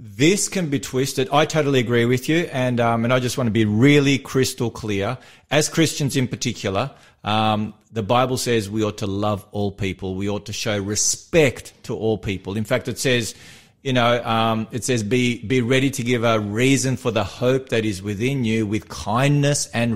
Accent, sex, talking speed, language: Australian, male, 205 wpm, English